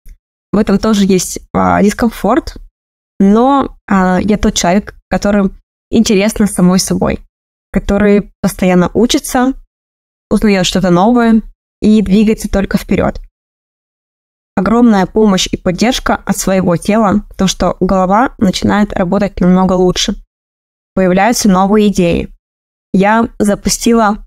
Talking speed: 105 wpm